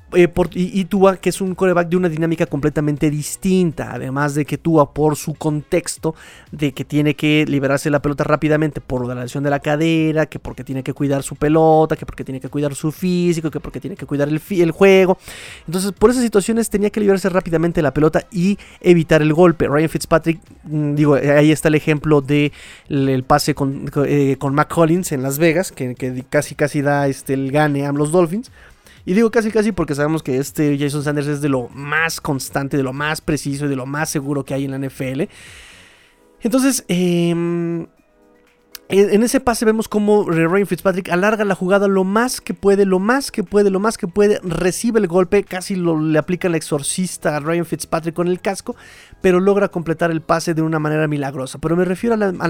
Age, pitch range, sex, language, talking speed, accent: 30-49, 145-185 Hz, male, Spanish, 210 wpm, Mexican